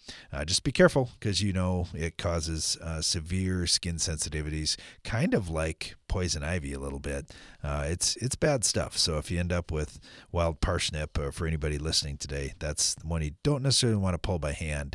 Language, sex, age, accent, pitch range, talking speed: English, male, 40-59, American, 75-105 Hz, 200 wpm